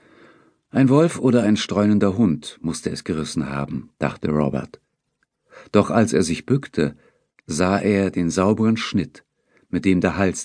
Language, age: German, 50-69